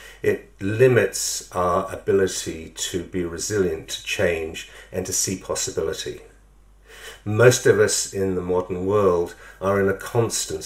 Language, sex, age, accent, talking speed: English, male, 50-69, British, 135 wpm